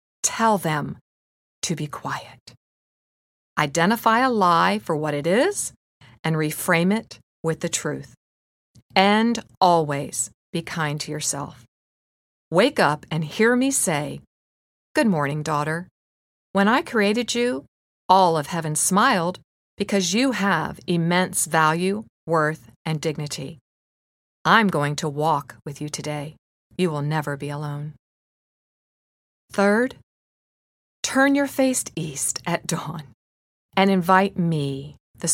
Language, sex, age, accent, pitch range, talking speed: English, female, 40-59, American, 145-190 Hz, 120 wpm